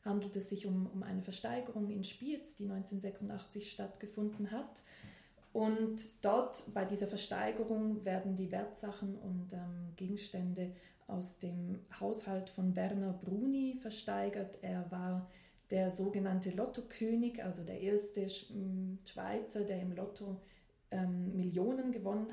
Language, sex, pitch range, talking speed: English, female, 185-210 Hz, 125 wpm